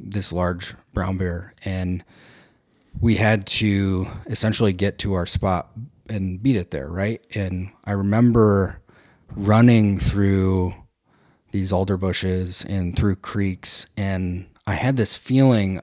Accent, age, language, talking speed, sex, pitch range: American, 30-49, English, 130 wpm, male, 90-105 Hz